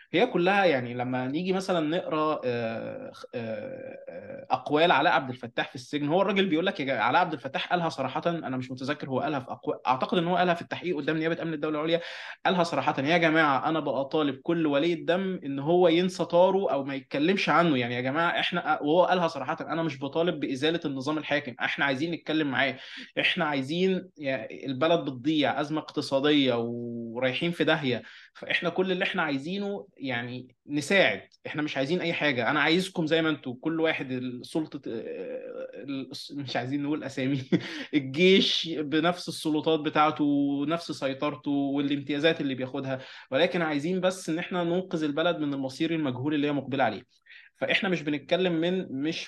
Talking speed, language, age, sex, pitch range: 165 wpm, Arabic, 20-39, male, 135-170 Hz